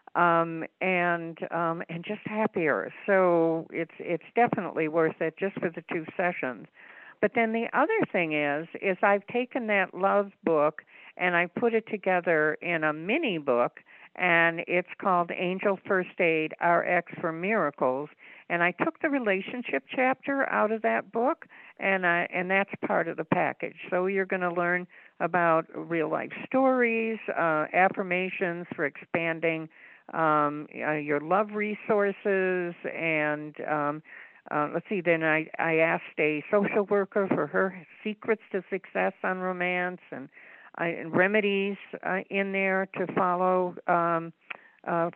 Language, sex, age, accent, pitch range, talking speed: English, female, 60-79, American, 165-205 Hz, 150 wpm